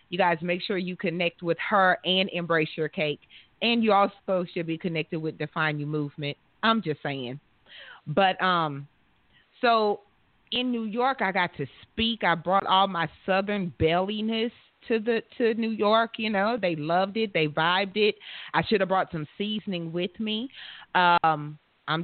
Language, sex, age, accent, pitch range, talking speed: English, female, 30-49, American, 160-210 Hz, 175 wpm